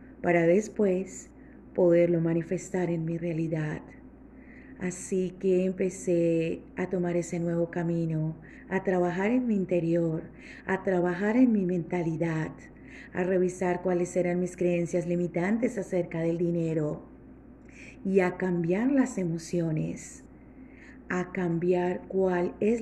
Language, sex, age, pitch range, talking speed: Spanish, female, 40-59, 170-190 Hz, 115 wpm